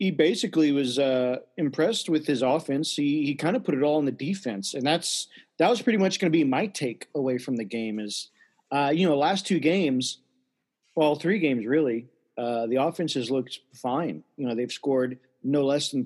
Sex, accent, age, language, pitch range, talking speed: male, American, 40-59, English, 130-150 Hz, 215 wpm